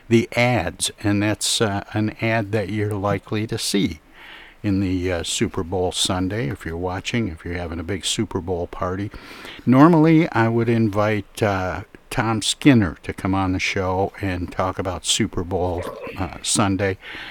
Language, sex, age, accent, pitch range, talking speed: English, male, 60-79, American, 95-110 Hz, 165 wpm